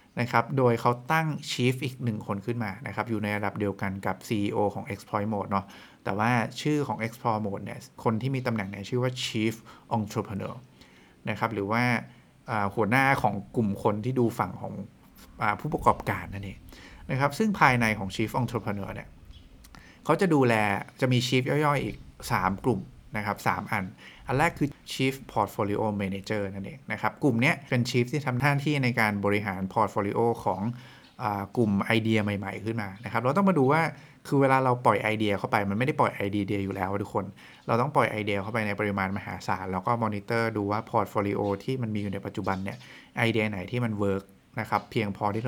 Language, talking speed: English, 35 wpm